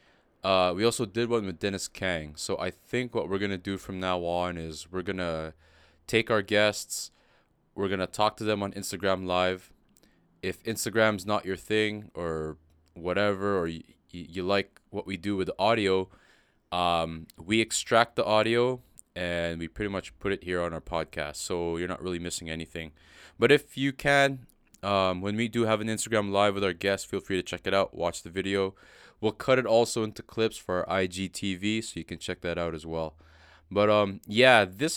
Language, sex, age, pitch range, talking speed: English, male, 20-39, 85-105 Hz, 200 wpm